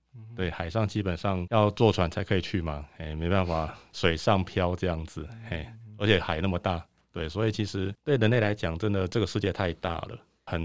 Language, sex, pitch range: Chinese, male, 85-105 Hz